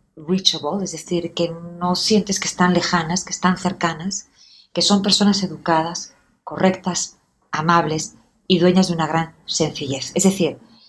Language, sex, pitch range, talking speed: English, female, 155-190 Hz, 145 wpm